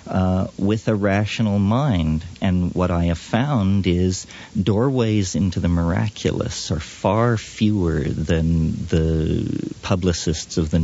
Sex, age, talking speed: male, 50-69, 125 wpm